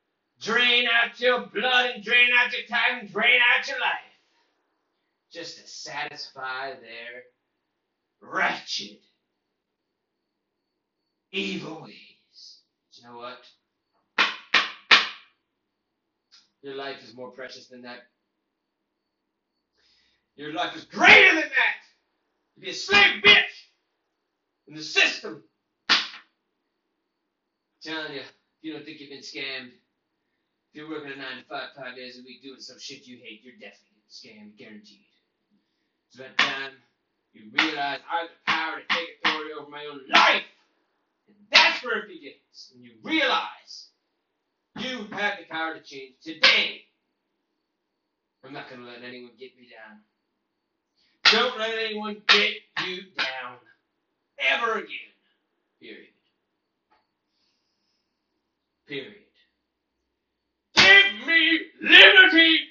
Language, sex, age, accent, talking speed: English, male, 30-49, American, 120 wpm